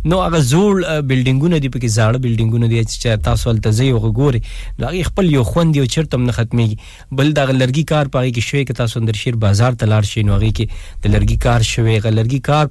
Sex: male